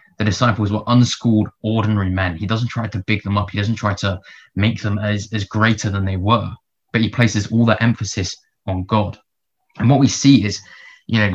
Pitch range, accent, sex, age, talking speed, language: 100-120 Hz, British, male, 20-39, 210 wpm, English